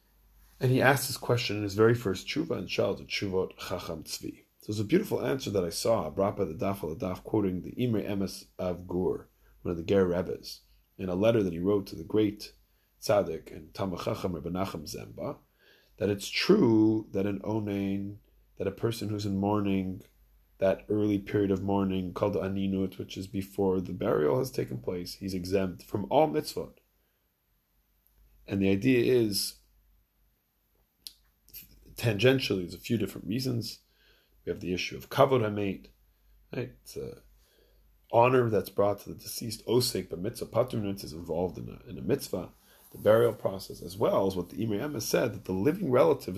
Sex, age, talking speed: male, 30-49, 175 wpm